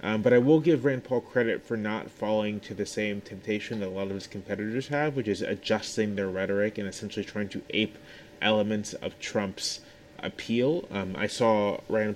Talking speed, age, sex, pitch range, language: 195 wpm, 20-39, male, 100-115 Hz, English